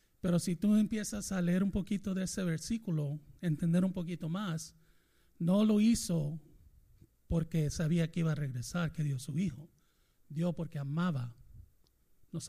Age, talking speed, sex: 40-59, 155 wpm, male